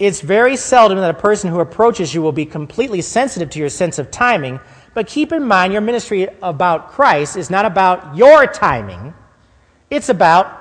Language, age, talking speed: English, 40-59, 185 wpm